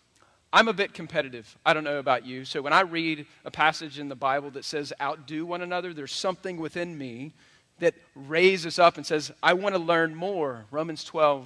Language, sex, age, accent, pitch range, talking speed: English, male, 40-59, American, 135-165 Hz, 205 wpm